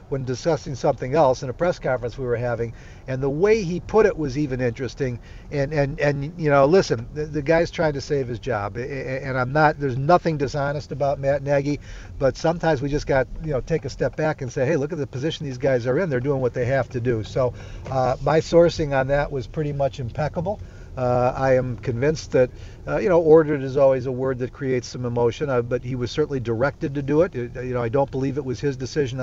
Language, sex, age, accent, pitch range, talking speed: English, male, 50-69, American, 125-150 Hz, 240 wpm